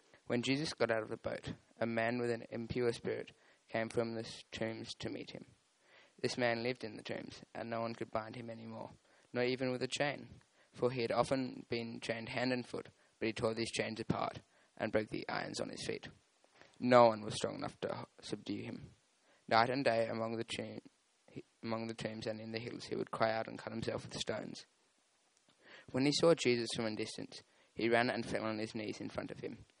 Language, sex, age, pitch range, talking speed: English, male, 20-39, 110-120 Hz, 210 wpm